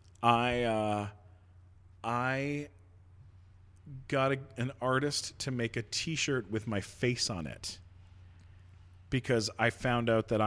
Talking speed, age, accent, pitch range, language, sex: 120 wpm, 40-59, American, 95-125 Hz, English, male